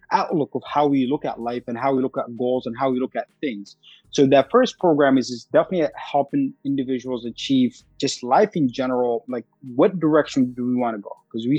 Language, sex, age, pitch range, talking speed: English, male, 20-39, 120-135 Hz, 225 wpm